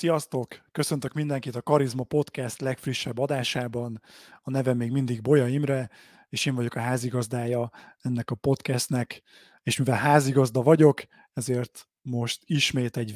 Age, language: 30-49, Hungarian